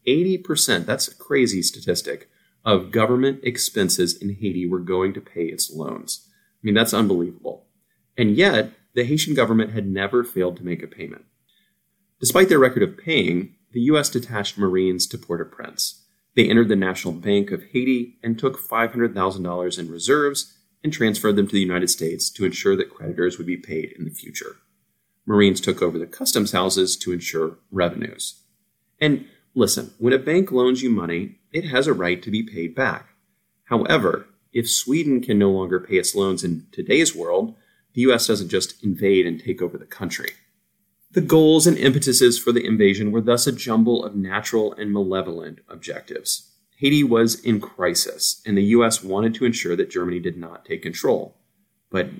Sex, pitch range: male, 95-125 Hz